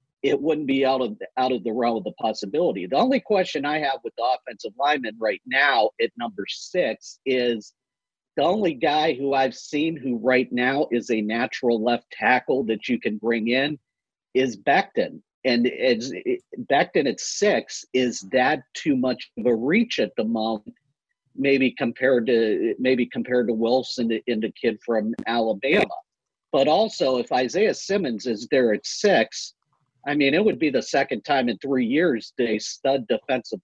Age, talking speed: 50-69, 175 wpm